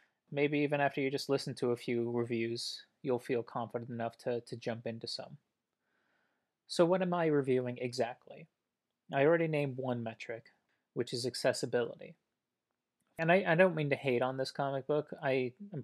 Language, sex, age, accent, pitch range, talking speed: English, male, 30-49, American, 120-145 Hz, 170 wpm